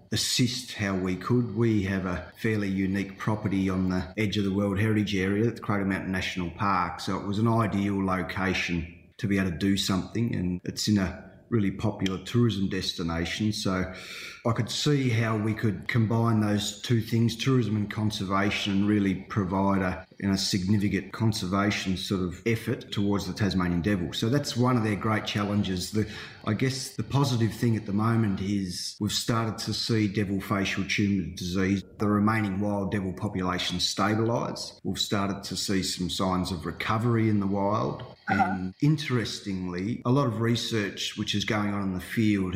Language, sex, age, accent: English, male, 30-49, Australian